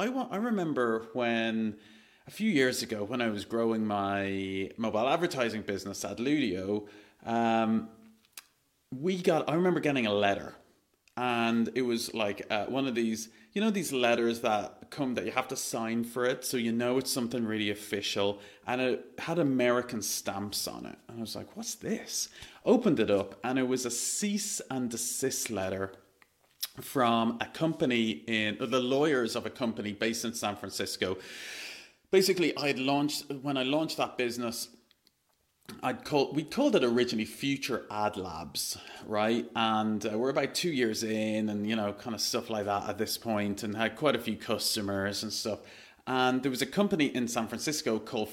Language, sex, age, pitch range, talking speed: English, male, 30-49, 105-130 Hz, 180 wpm